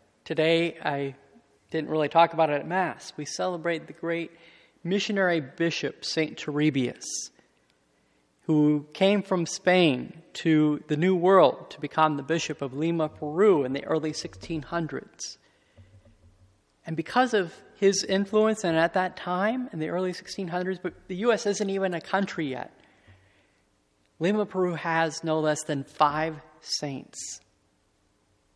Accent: American